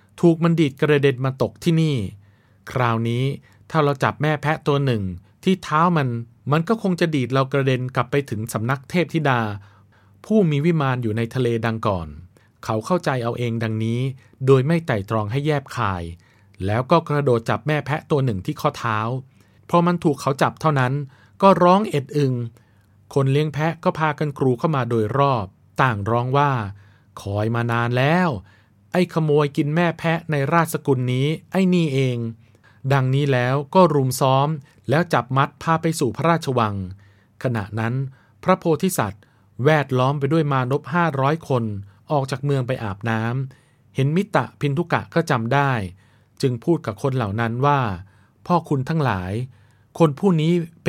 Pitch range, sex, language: 115-155 Hz, male, Thai